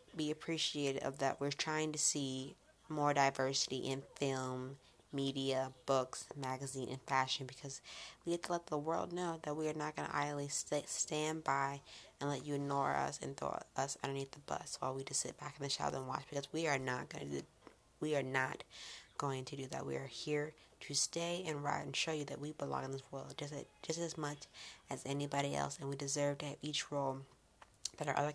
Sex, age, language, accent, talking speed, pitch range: female, 20-39, English, American, 215 wpm, 135-155 Hz